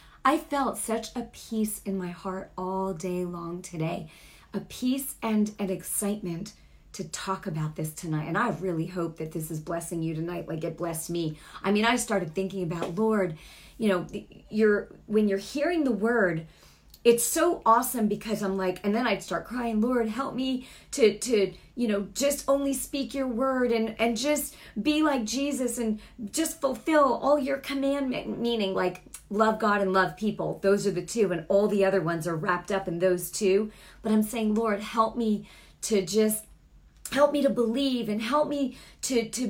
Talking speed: 190 wpm